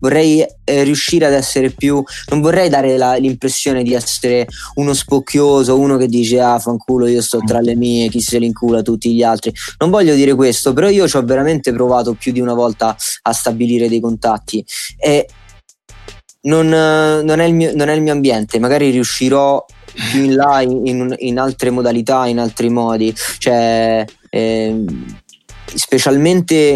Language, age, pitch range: Italian, 20-39, 115-140 Hz